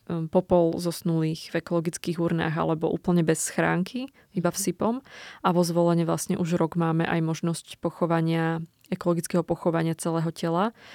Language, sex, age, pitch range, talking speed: Slovak, female, 20-39, 165-180 Hz, 145 wpm